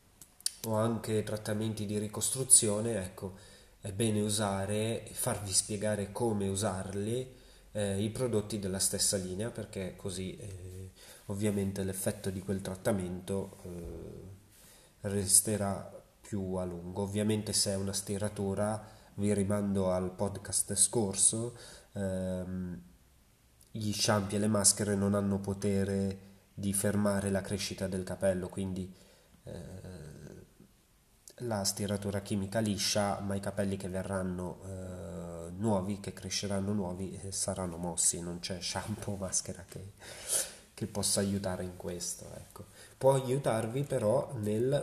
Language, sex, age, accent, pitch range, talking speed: Italian, male, 30-49, native, 95-105 Hz, 125 wpm